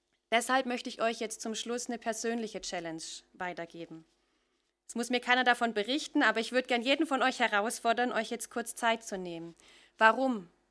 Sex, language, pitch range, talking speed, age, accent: female, German, 220-275 Hz, 180 wpm, 30-49, German